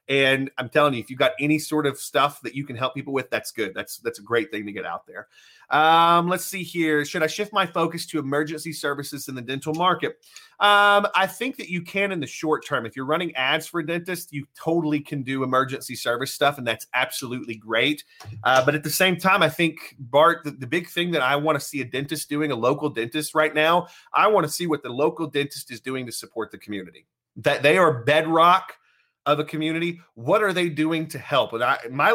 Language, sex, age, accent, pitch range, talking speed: English, male, 30-49, American, 140-170 Hz, 235 wpm